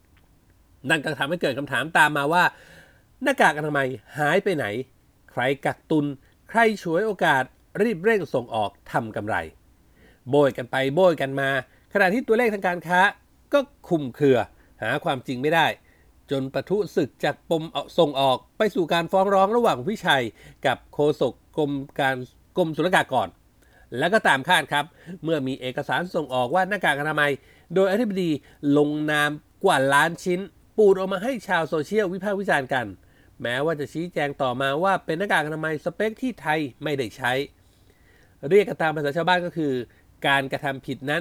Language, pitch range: Thai, 130-185 Hz